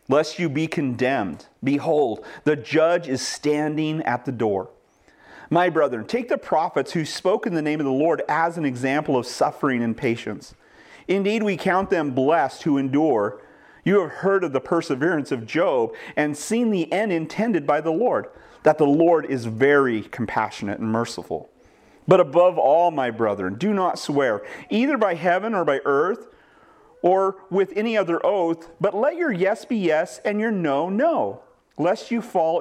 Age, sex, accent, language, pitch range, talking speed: 40-59, male, American, English, 145-195 Hz, 175 wpm